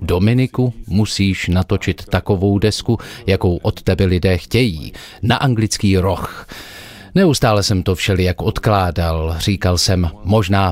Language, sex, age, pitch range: Czech, male, 30-49, 90-115 Hz